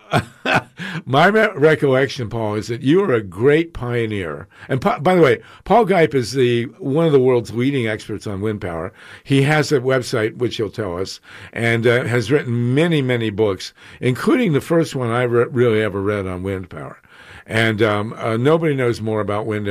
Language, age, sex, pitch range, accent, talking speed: English, 50-69, male, 105-130 Hz, American, 195 wpm